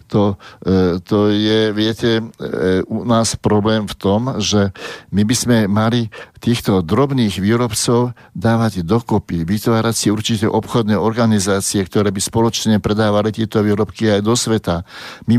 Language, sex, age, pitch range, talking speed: Slovak, male, 60-79, 105-125 Hz, 135 wpm